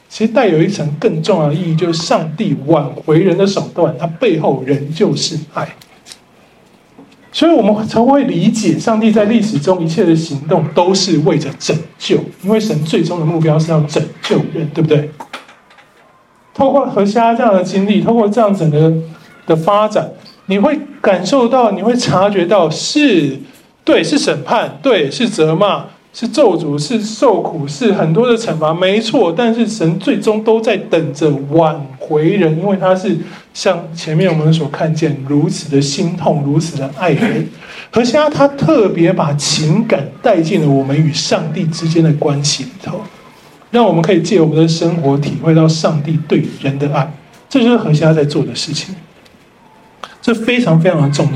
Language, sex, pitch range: Chinese, male, 155-210 Hz